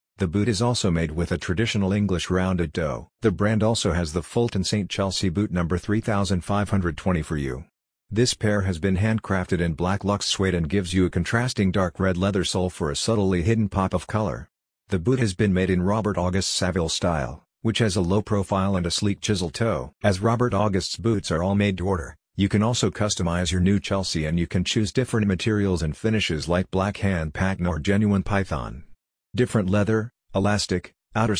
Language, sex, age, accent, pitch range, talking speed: English, male, 50-69, American, 90-105 Hz, 200 wpm